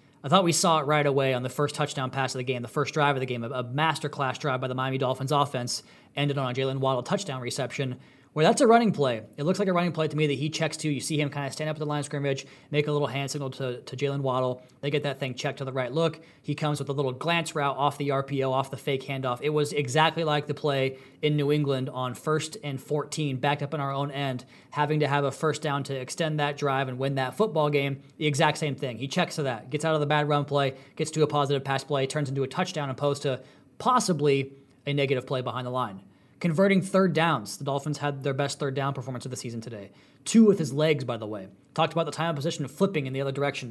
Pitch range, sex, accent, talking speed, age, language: 135-155 Hz, male, American, 275 wpm, 20-39, English